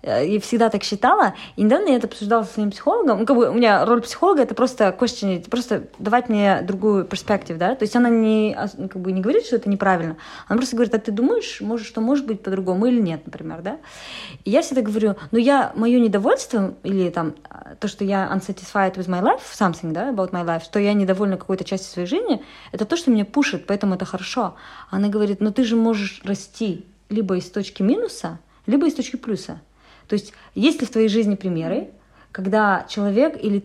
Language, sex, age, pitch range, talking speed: Russian, female, 30-49, 195-245 Hz, 210 wpm